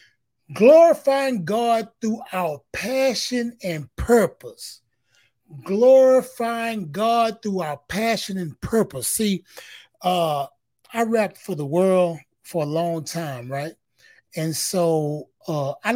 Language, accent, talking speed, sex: English, American, 115 wpm, male